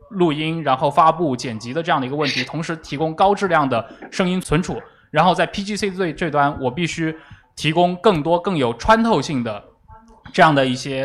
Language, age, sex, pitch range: Chinese, 20-39, male, 135-200 Hz